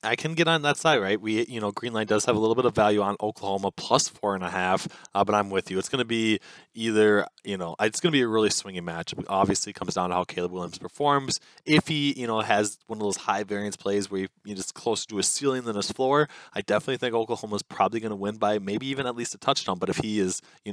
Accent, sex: American, male